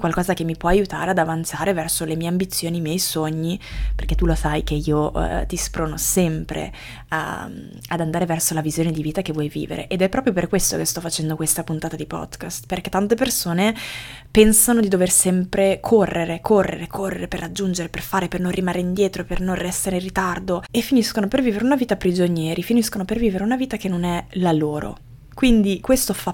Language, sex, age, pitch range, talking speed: Italian, female, 20-39, 165-195 Hz, 210 wpm